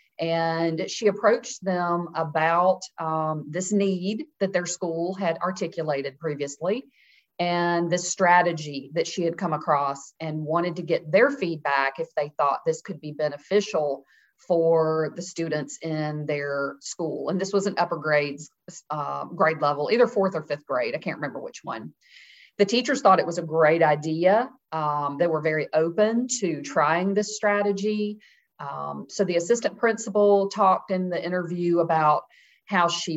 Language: English